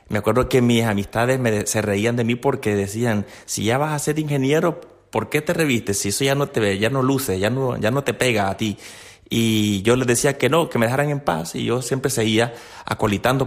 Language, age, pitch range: Spanish, 30-49, 100-130 Hz